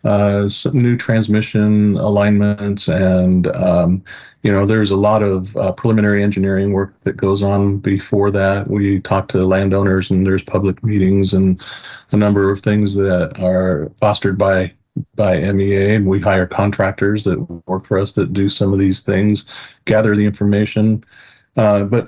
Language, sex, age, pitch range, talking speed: English, male, 40-59, 95-105 Hz, 160 wpm